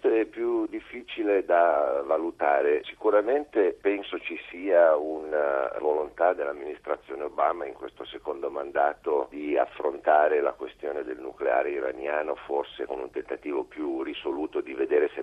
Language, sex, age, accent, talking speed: Italian, male, 50-69, native, 130 wpm